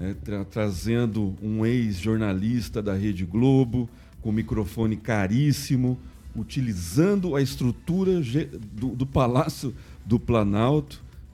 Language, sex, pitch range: Portuguese, male, 100-125 Hz